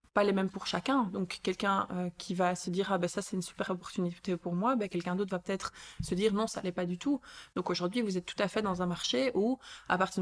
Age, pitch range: 20-39, 180-210 Hz